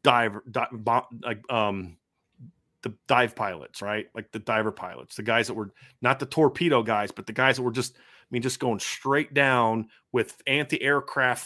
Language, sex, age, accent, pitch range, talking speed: English, male, 30-49, American, 115-135 Hz, 185 wpm